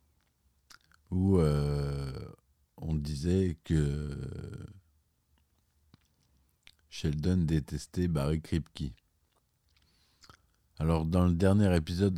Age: 50-69